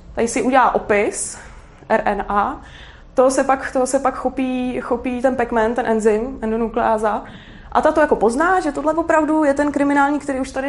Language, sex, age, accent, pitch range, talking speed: Czech, female, 20-39, native, 215-275 Hz, 170 wpm